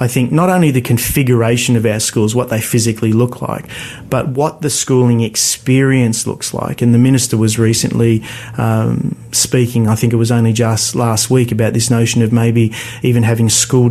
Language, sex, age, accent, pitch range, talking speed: English, male, 40-59, Australian, 115-125 Hz, 190 wpm